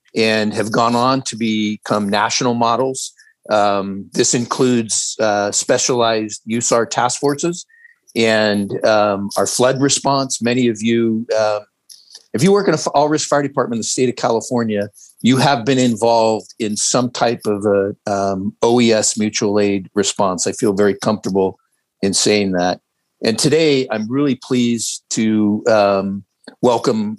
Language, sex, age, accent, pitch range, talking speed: English, male, 50-69, American, 105-130 Hz, 150 wpm